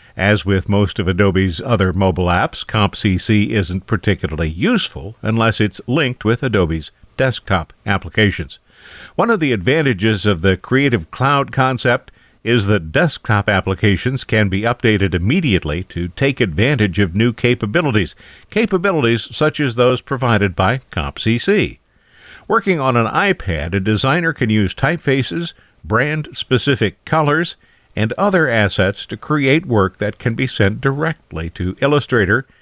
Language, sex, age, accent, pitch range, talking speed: English, male, 50-69, American, 100-135 Hz, 135 wpm